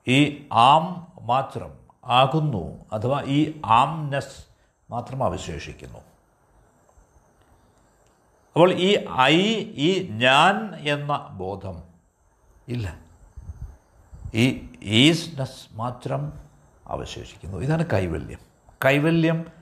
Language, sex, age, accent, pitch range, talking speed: Malayalam, male, 60-79, native, 90-155 Hz, 70 wpm